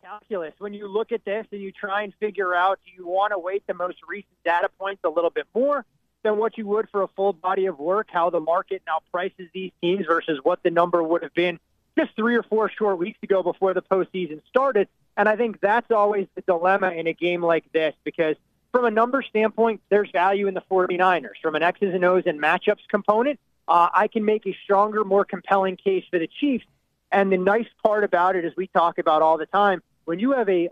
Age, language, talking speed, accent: 30-49, English, 235 wpm, American